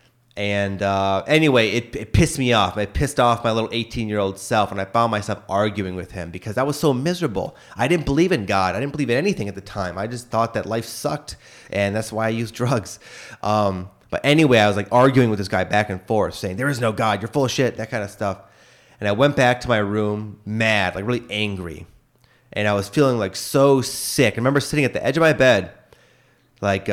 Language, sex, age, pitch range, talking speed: English, male, 30-49, 105-140 Hz, 240 wpm